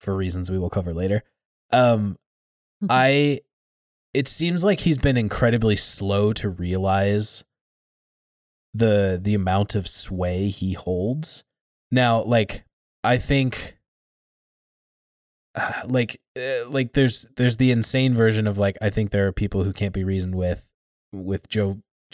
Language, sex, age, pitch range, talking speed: English, male, 20-39, 95-125 Hz, 135 wpm